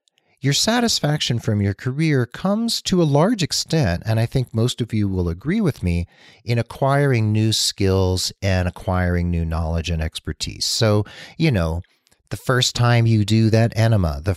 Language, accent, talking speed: English, American, 170 wpm